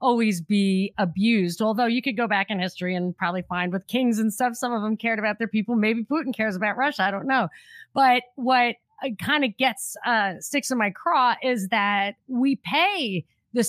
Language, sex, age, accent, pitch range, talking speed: English, female, 30-49, American, 195-265 Hz, 205 wpm